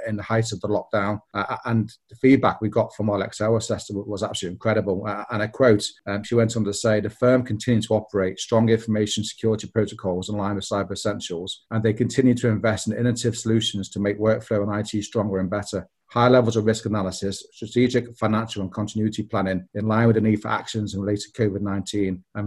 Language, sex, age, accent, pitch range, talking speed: English, male, 40-59, British, 105-115 Hz, 215 wpm